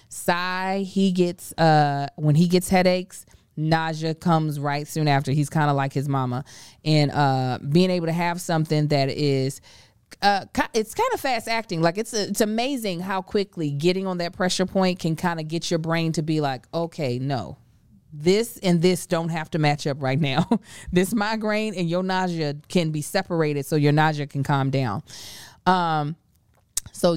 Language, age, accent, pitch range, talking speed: English, 20-39, American, 145-180 Hz, 180 wpm